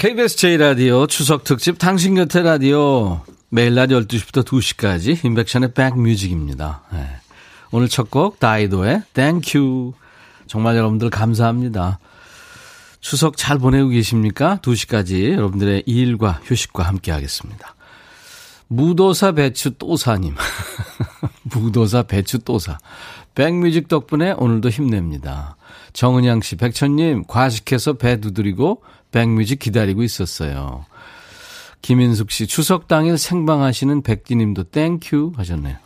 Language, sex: Korean, male